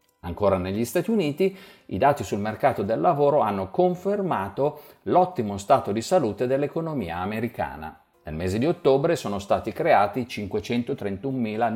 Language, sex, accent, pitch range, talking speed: Italian, male, native, 105-155 Hz, 135 wpm